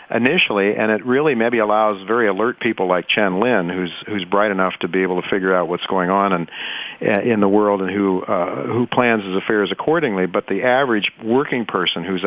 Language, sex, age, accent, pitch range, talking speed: English, male, 50-69, American, 95-115 Hz, 215 wpm